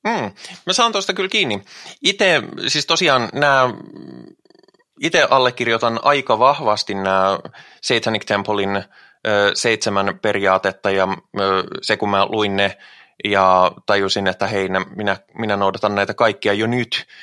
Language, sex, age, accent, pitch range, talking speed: Finnish, male, 20-39, native, 95-115 Hz, 130 wpm